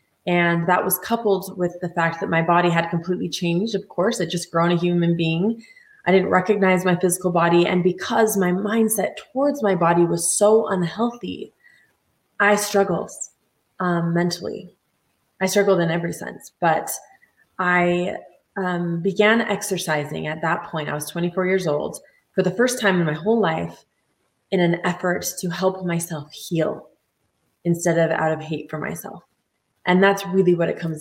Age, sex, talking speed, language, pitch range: 20-39, female, 170 wpm, English, 165-195 Hz